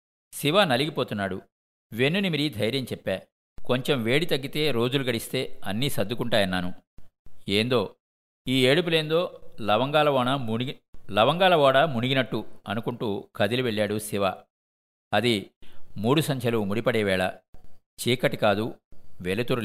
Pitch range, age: 95-140 Hz, 50-69